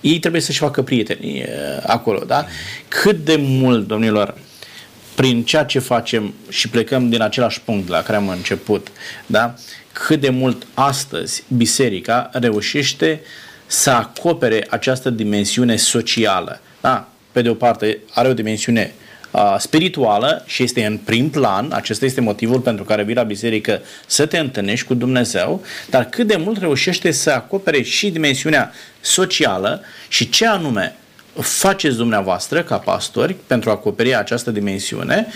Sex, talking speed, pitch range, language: male, 145 wpm, 110-155 Hz, Romanian